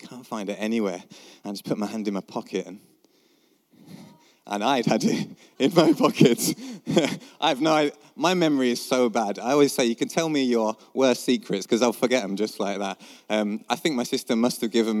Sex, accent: male, British